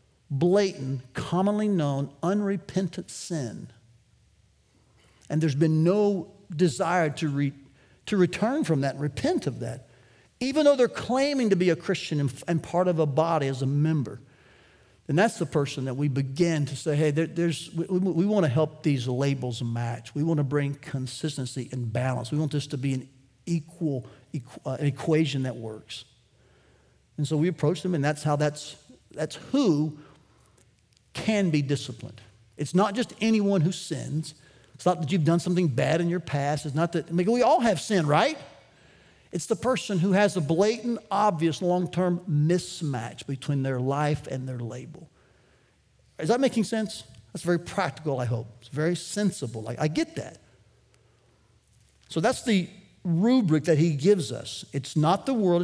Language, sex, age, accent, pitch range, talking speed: English, male, 50-69, American, 135-180 Hz, 175 wpm